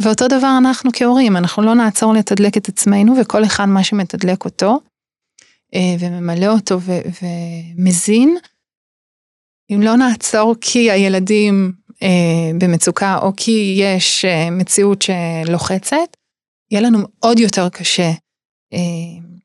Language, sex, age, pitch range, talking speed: Hebrew, female, 30-49, 185-225 Hz, 115 wpm